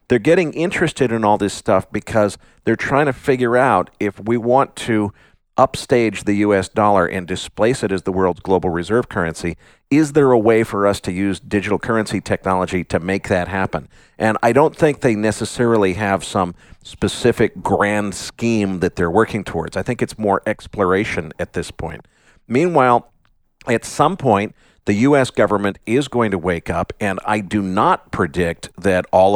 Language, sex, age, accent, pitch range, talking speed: English, male, 50-69, American, 90-110 Hz, 180 wpm